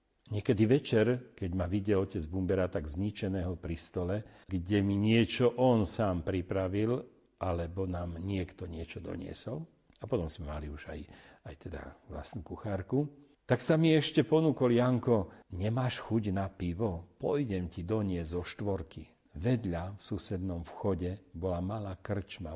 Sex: male